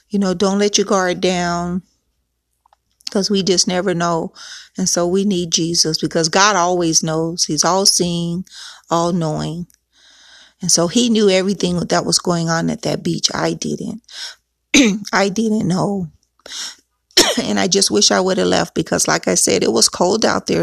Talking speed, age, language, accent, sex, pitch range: 175 wpm, 40-59, English, American, female, 180-230 Hz